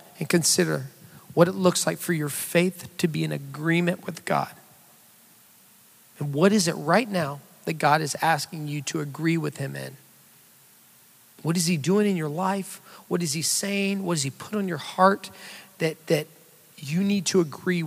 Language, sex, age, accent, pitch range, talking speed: English, male, 40-59, American, 150-190 Hz, 185 wpm